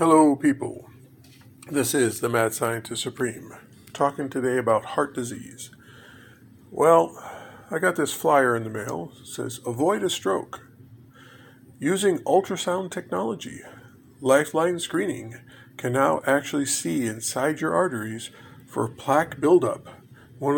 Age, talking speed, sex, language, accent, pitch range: 50-69, 120 wpm, male, English, American, 125-145 Hz